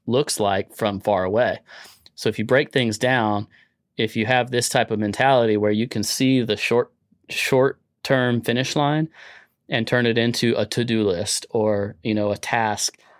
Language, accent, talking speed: English, American, 180 wpm